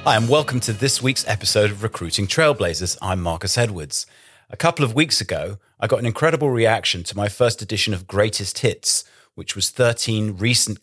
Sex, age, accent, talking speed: male, 30-49, British, 190 wpm